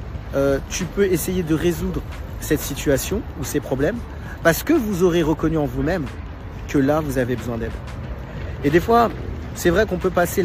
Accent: French